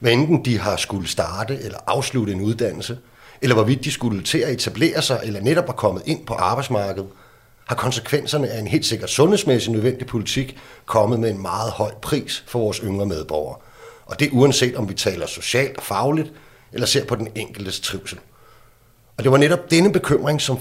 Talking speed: 190 wpm